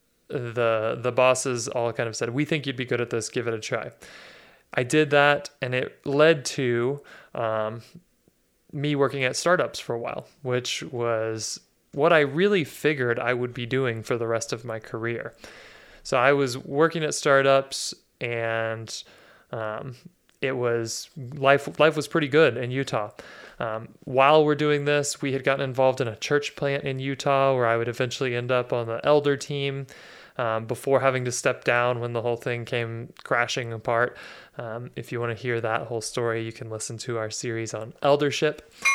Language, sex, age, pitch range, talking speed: English, male, 20-39, 120-140 Hz, 185 wpm